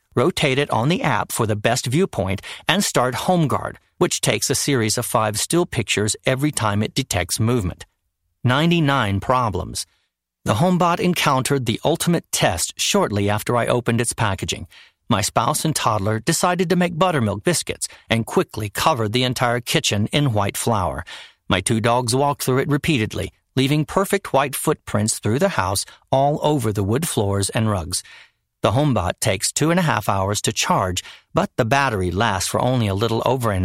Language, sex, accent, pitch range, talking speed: English, male, American, 105-140 Hz, 175 wpm